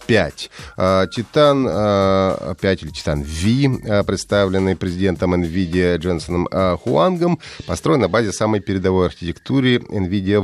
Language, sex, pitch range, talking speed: Russian, male, 95-125 Hz, 110 wpm